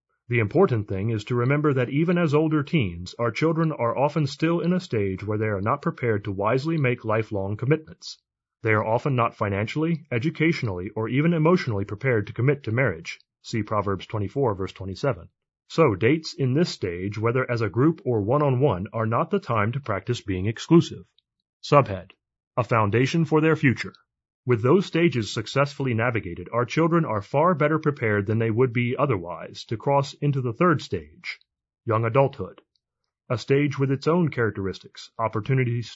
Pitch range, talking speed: 110-150 Hz, 175 wpm